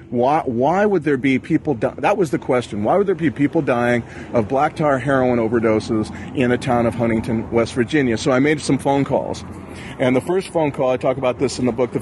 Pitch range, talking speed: 115-140 Hz, 240 wpm